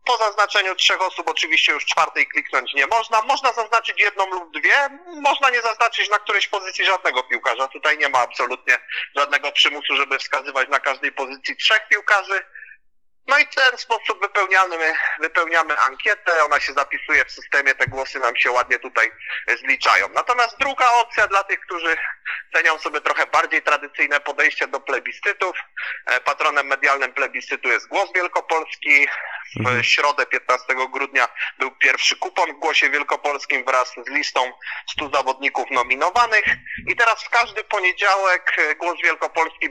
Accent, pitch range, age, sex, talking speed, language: native, 145-215 Hz, 30-49, male, 150 wpm, Polish